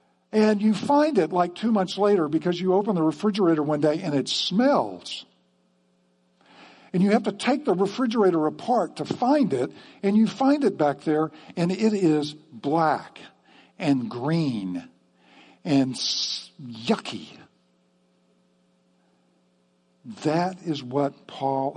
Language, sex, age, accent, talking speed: English, male, 60-79, American, 130 wpm